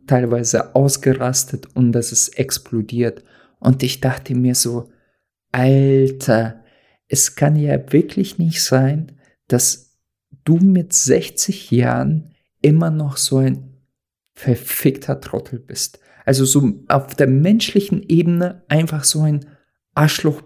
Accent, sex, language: German, male, German